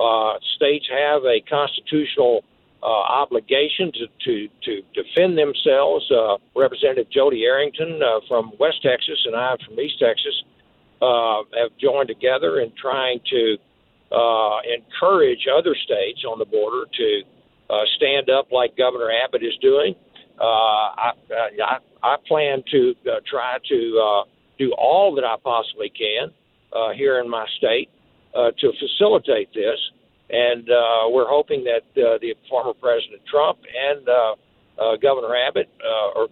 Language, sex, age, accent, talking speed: English, male, 60-79, American, 145 wpm